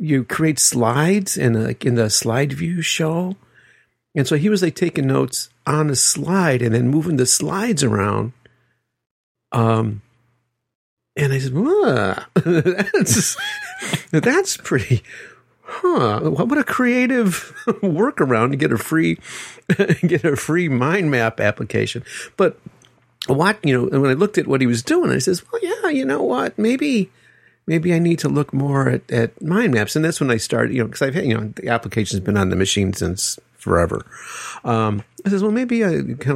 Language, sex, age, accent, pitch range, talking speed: English, male, 50-69, American, 115-170 Hz, 175 wpm